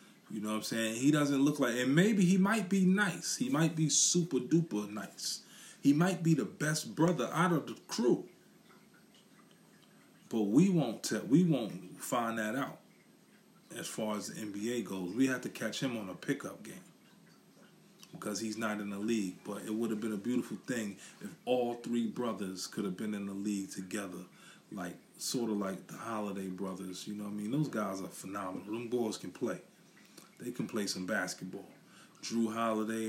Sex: male